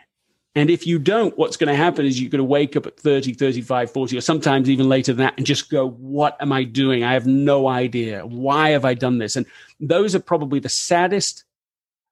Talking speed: 235 wpm